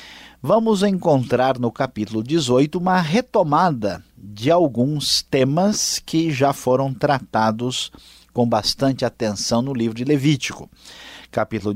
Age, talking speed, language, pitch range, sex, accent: 50-69, 110 wpm, Portuguese, 115-155 Hz, male, Brazilian